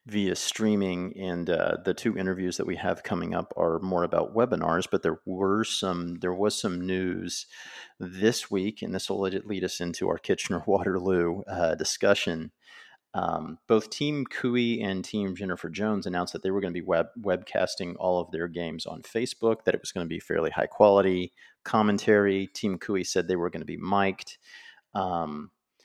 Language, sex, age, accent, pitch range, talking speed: English, male, 40-59, American, 85-105 Hz, 180 wpm